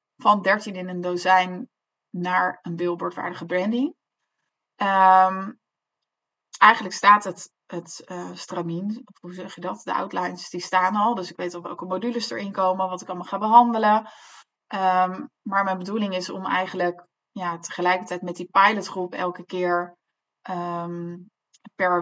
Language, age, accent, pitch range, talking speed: Dutch, 20-39, Dutch, 175-200 Hz, 135 wpm